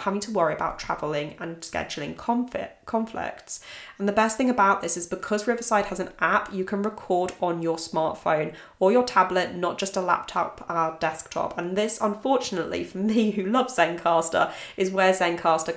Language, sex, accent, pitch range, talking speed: English, female, British, 170-210 Hz, 180 wpm